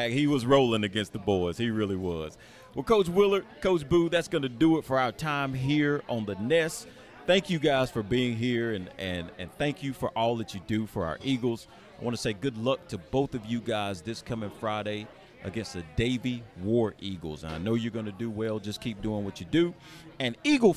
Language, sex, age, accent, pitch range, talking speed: English, male, 40-59, American, 115-170 Hz, 225 wpm